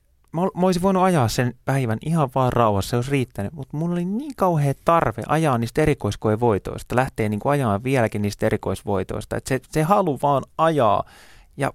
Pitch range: 105-125 Hz